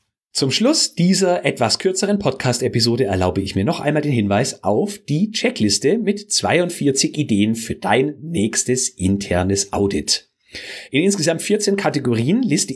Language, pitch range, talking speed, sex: German, 110-175 Hz, 135 wpm, male